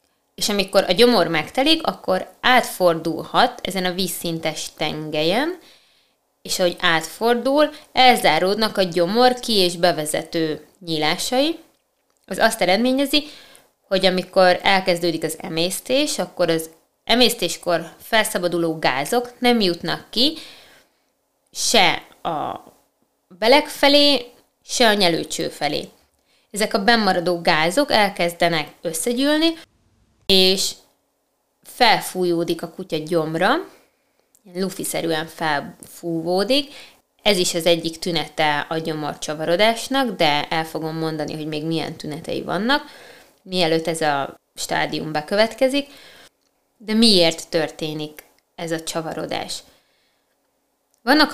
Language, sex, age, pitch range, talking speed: Hungarian, female, 20-39, 165-245 Hz, 105 wpm